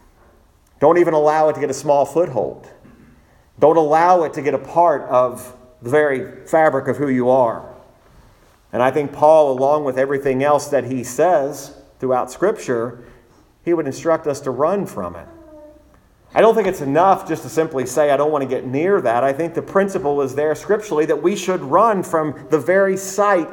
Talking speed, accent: 195 wpm, American